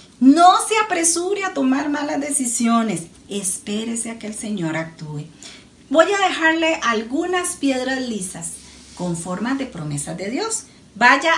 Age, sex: 40-59, female